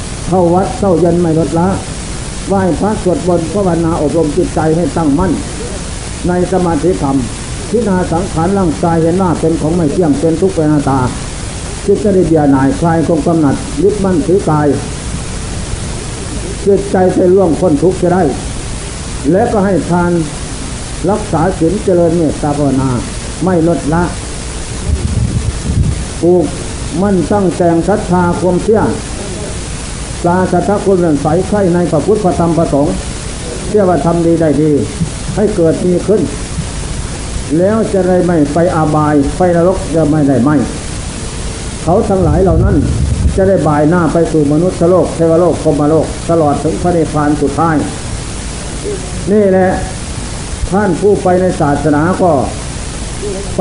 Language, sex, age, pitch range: Thai, male, 60-79, 150-185 Hz